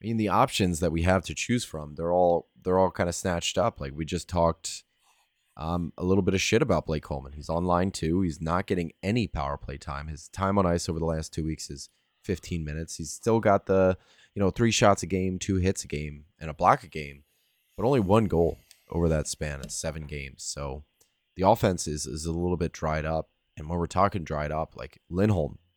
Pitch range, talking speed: 75-95 Hz, 235 wpm